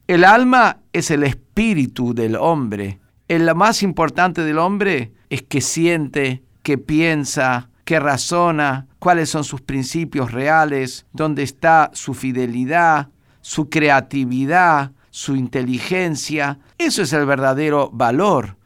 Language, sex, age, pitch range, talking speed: Spanish, male, 50-69, 130-170 Hz, 120 wpm